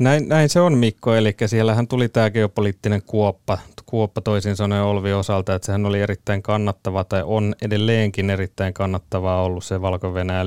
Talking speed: 165 wpm